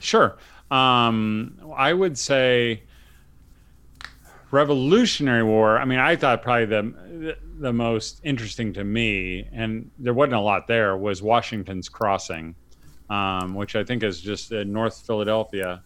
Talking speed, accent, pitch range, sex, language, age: 135 wpm, American, 100-130 Hz, male, English, 40-59